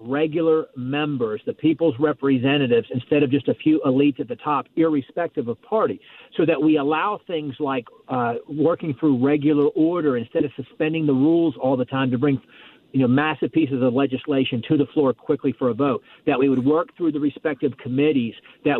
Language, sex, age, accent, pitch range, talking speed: English, male, 50-69, American, 135-165 Hz, 190 wpm